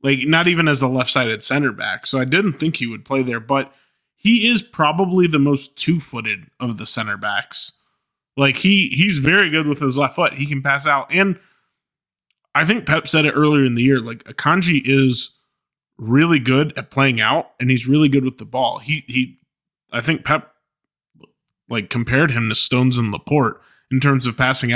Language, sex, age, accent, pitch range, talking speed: English, male, 20-39, American, 125-150 Hz, 195 wpm